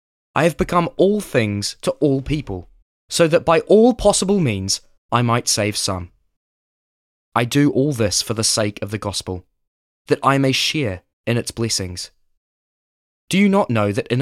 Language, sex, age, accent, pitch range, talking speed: English, male, 20-39, British, 100-140 Hz, 175 wpm